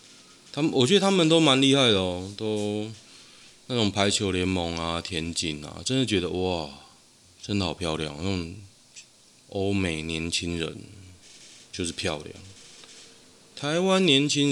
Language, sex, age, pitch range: Chinese, male, 20-39, 85-110 Hz